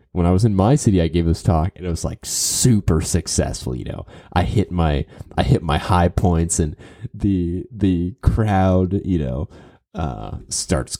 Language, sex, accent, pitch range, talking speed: English, male, American, 85-110 Hz, 185 wpm